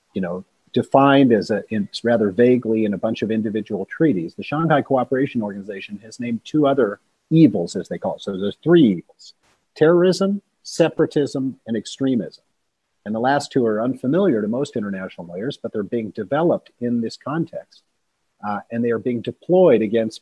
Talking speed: 175 wpm